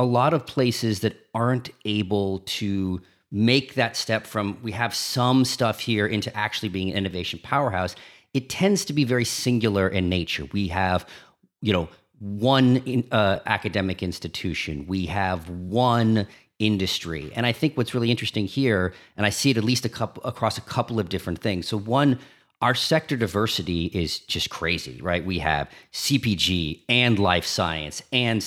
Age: 40-59